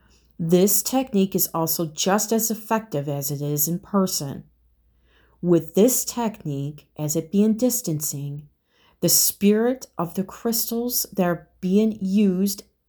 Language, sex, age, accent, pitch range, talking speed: English, female, 30-49, American, 145-190 Hz, 130 wpm